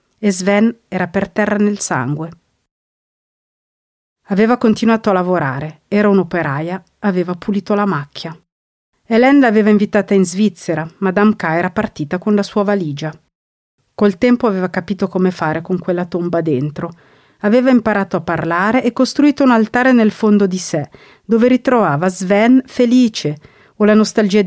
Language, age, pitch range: Italian, 40-59, 175-220 Hz